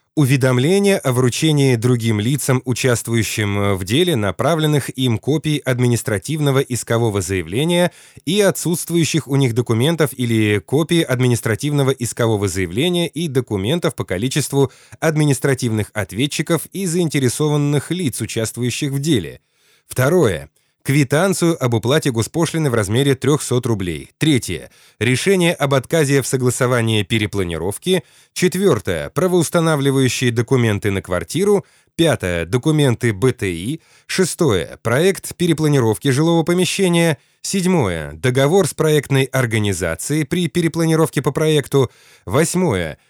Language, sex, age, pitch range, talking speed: Russian, male, 20-39, 120-160 Hz, 105 wpm